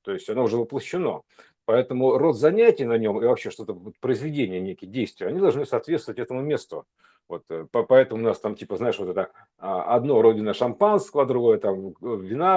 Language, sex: Russian, male